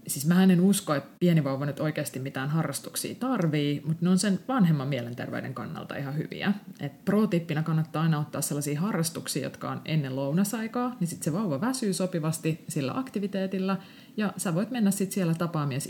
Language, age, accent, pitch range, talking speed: Finnish, 30-49, native, 145-190 Hz, 175 wpm